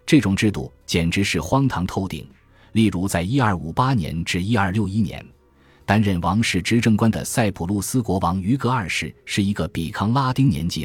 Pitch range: 85-115 Hz